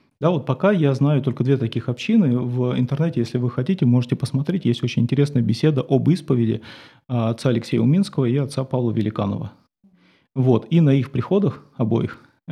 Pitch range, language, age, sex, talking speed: 120-145 Hz, Russian, 30-49, male, 170 wpm